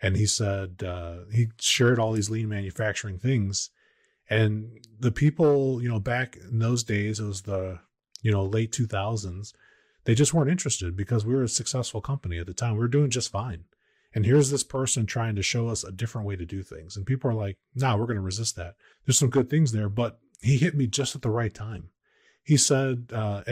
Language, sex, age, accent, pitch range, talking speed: English, male, 30-49, American, 105-130 Hz, 225 wpm